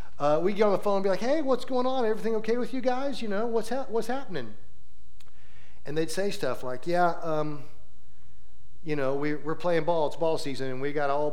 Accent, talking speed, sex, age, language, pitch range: American, 240 wpm, male, 40-59, English, 130-170 Hz